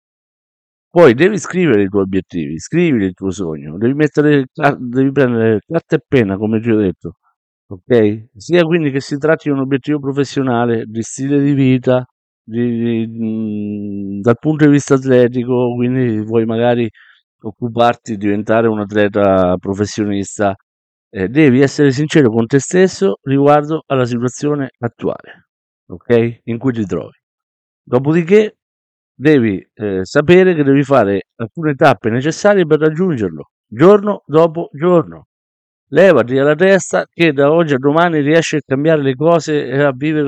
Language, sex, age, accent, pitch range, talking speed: Italian, male, 50-69, native, 110-150 Hz, 145 wpm